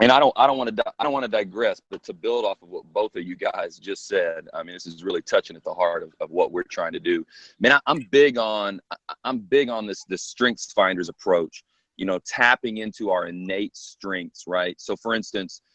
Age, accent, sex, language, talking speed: 30-49, American, male, English, 245 wpm